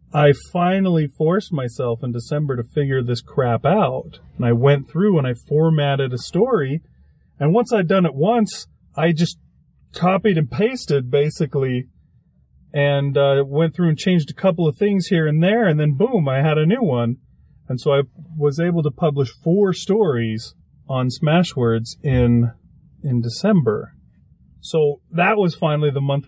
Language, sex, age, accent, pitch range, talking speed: English, male, 40-59, American, 120-155 Hz, 165 wpm